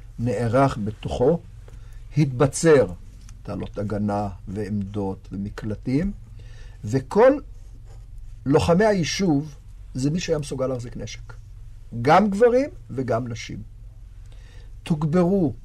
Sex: male